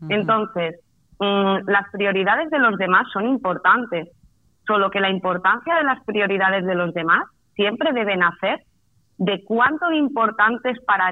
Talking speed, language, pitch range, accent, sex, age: 145 wpm, Spanish, 180-225 Hz, Spanish, female, 30-49